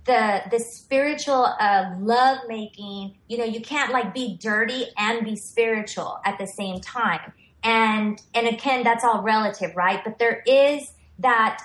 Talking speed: 160 wpm